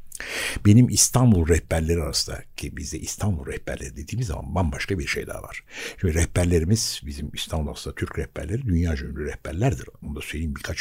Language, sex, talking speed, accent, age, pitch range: Turkish, male, 150 wpm, native, 60-79, 80-115 Hz